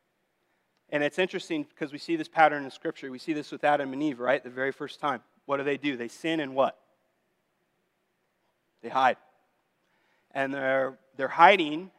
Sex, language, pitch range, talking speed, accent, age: male, English, 145-185 Hz, 180 wpm, American, 30-49